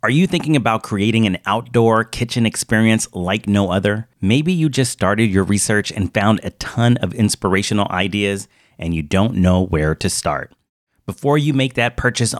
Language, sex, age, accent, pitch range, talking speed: English, male, 30-49, American, 90-115 Hz, 180 wpm